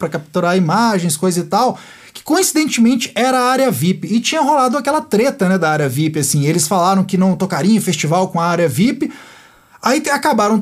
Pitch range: 175-245 Hz